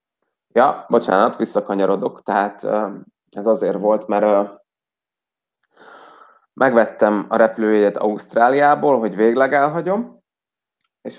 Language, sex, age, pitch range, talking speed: Hungarian, male, 30-49, 105-120 Hz, 85 wpm